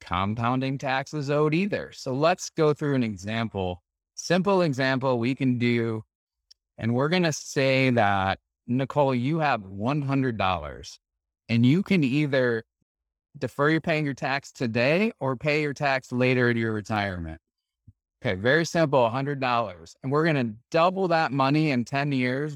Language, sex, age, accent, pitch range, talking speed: English, male, 30-49, American, 115-150 Hz, 145 wpm